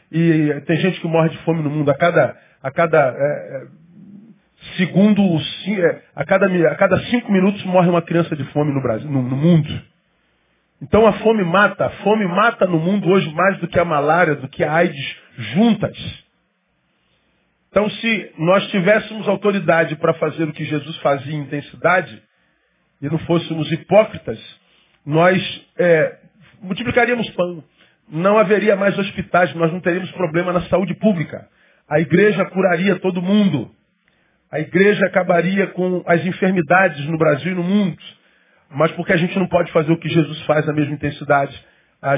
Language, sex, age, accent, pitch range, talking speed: Portuguese, male, 40-59, Brazilian, 155-195 Hz, 160 wpm